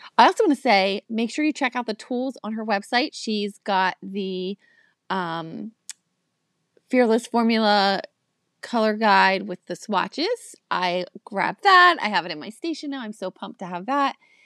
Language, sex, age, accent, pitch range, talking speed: English, female, 30-49, American, 200-260 Hz, 175 wpm